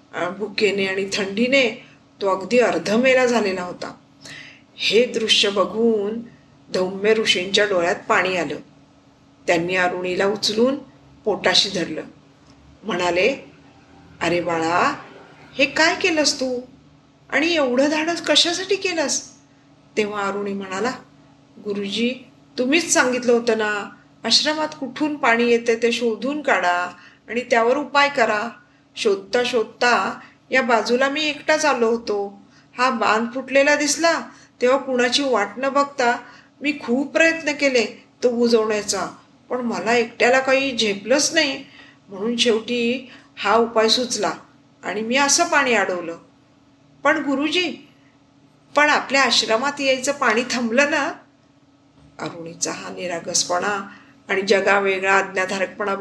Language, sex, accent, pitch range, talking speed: Marathi, female, native, 190-265 Hz, 115 wpm